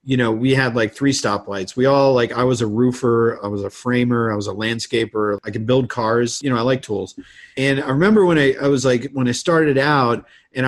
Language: English